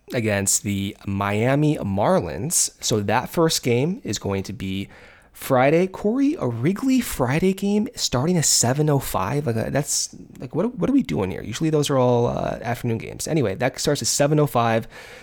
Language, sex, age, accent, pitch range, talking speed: English, male, 20-39, American, 105-145 Hz, 160 wpm